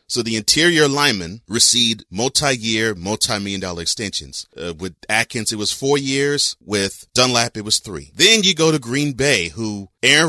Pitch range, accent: 100-140 Hz, American